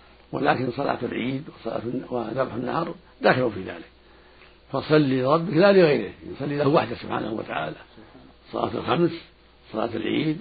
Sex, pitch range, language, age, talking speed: male, 100-155 Hz, Arabic, 60-79, 125 wpm